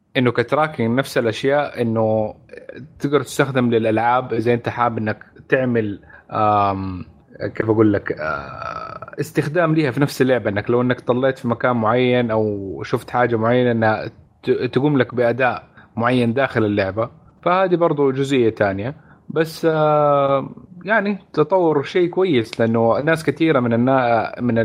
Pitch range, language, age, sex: 110-140 Hz, Arabic, 30-49, male